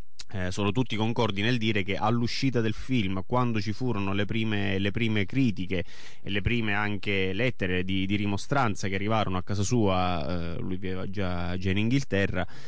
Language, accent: Italian, native